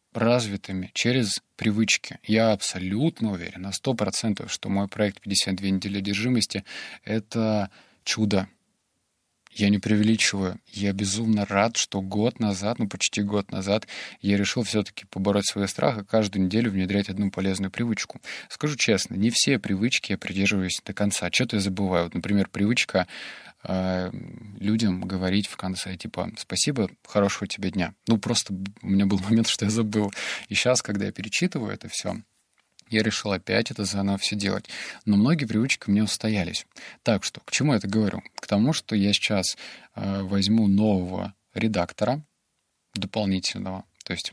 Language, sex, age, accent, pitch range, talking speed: Russian, male, 20-39, native, 95-110 Hz, 155 wpm